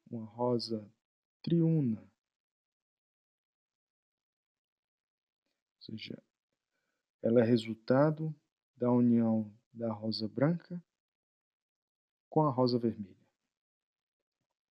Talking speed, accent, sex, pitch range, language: 70 wpm, Brazilian, male, 115-140 Hz, Portuguese